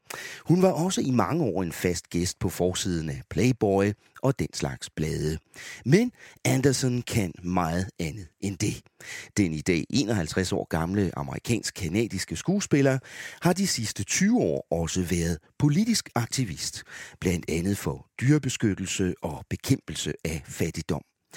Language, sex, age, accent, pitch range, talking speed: English, male, 40-59, Danish, 85-135 Hz, 140 wpm